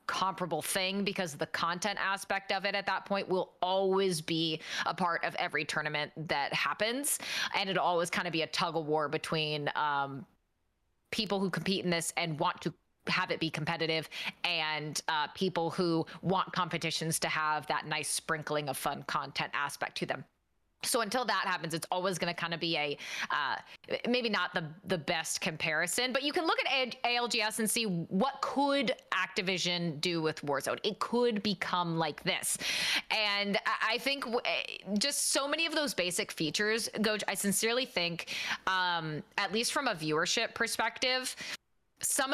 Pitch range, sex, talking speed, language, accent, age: 165-215 Hz, female, 175 wpm, English, American, 20-39